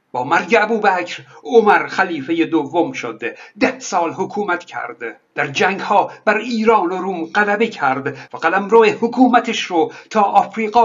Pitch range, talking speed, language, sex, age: 165-220 Hz, 145 wpm, Persian, male, 60-79